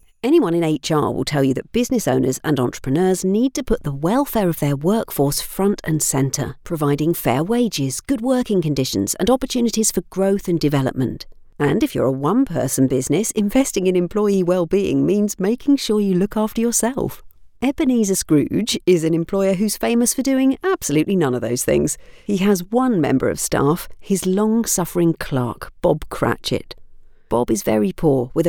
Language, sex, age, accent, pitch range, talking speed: English, female, 50-69, British, 145-220 Hz, 170 wpm